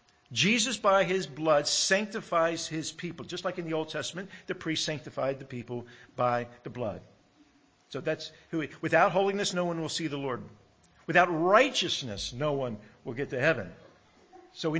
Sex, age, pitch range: male, 50-69, 135-180 Hz